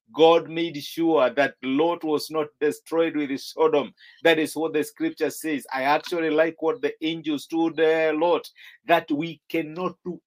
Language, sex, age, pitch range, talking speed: English, male, 50-69, 150-175 Hz, 175 wpm